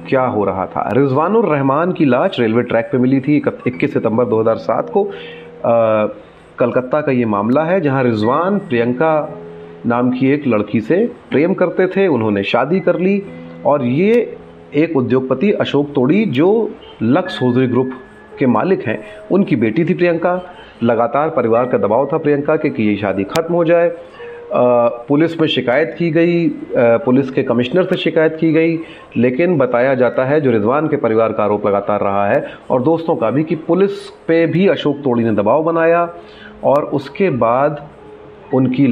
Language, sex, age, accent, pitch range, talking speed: Hindi, male, 30-49, native, 115-165 Hz, 170 wpm